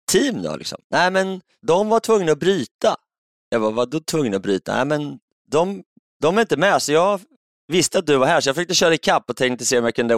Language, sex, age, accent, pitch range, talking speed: Swedish, male, 30-49, native, 125-180 Hz, 260 wpm